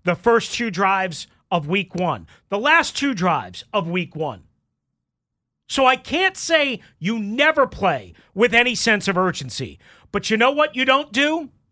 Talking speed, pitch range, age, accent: 170 wpm, 225-325 Hz, 40-59, American